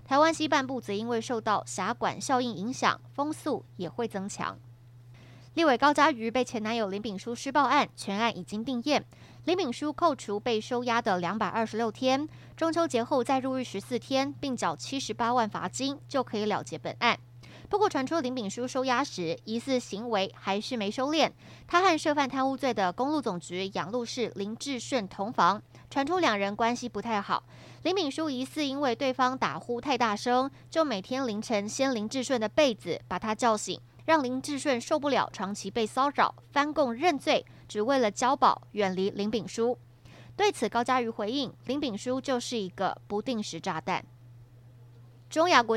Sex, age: female, 20-39